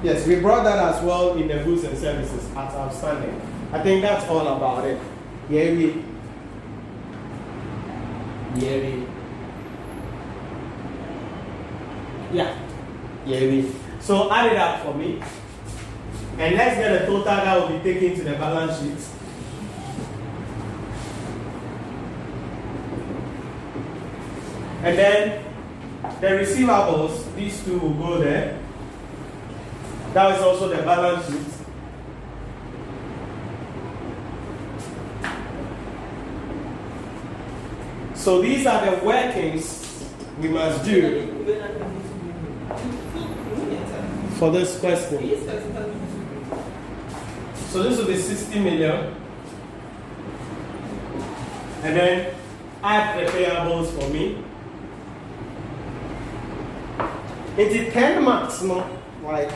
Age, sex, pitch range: 30-49, male, 130-185 Hz